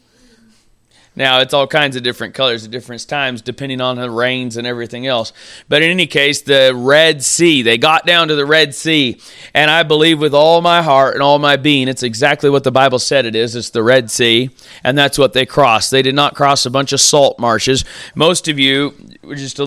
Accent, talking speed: American, 225 wpm